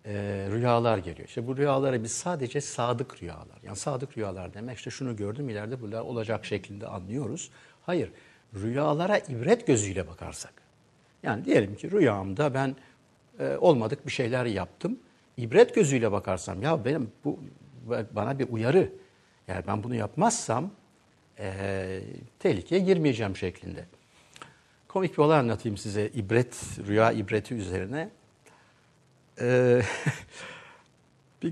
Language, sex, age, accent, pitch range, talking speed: Turkish, male, 60-79, native, 105-145 Hz, 120 wpm